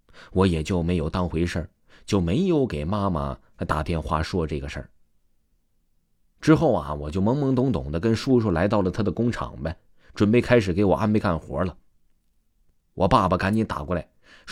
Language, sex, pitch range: Chinese, male, 85-120 Hz